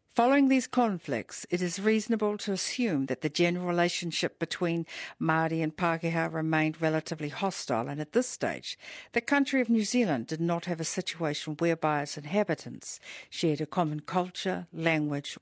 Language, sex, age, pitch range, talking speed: English, female, 60-79, 160-210 Hz, 160 wpm